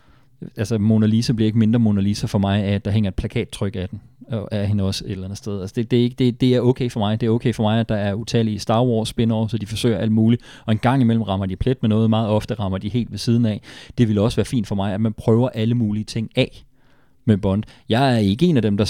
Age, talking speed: 30-49, 255 wpm